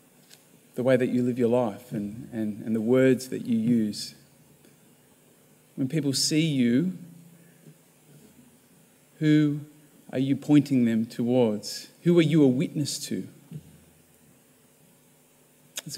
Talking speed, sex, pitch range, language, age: 115 wpm, male, 125-170 Hz, English, 30-49